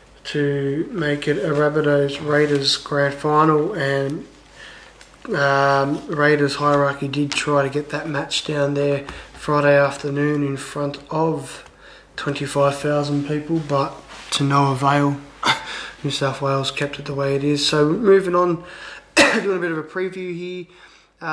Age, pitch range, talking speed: 20-39, 145-165 Hz, 140 wpm